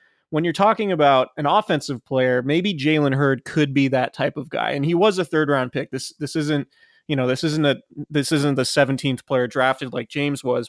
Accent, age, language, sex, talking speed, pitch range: American, 30-49, English, male, 225 wpm, 130-150 Hz